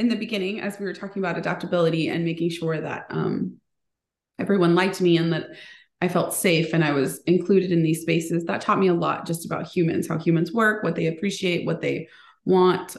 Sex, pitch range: female, 165-195 Hz